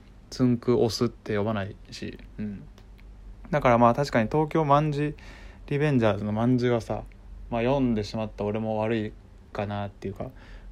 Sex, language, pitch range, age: male, Japanese, 100-120 Hz, 20-39